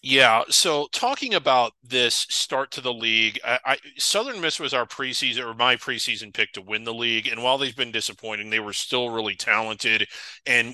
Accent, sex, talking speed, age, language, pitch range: American, male, 185 wpm, 30-49, English, 115-135 Hz